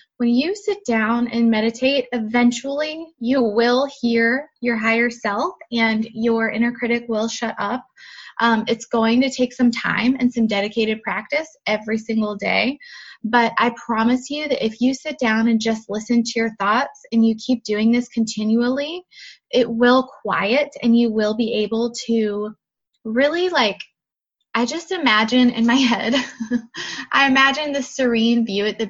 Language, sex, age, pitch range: English, female, 20-39, 220-255 Hz